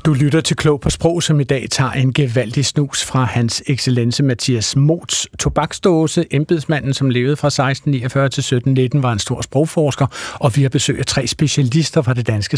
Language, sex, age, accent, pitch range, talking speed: Danish, male, 60-79, native, 125-155 Hz, 185 wpm